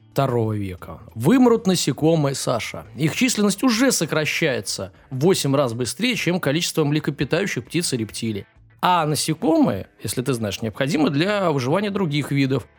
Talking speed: 135 wpm